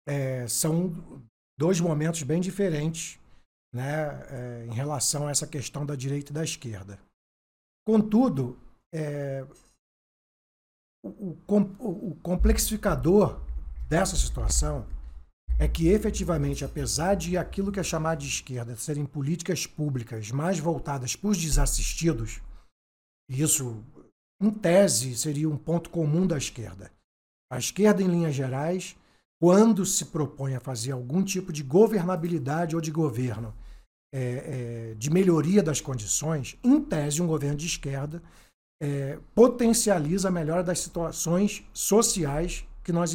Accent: Brazilian